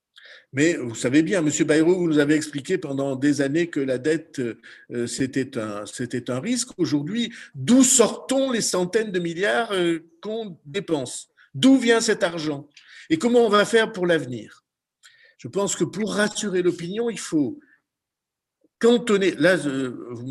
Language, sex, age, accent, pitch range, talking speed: French, male, 50-69, French, 130-205 Hz, 160 wpm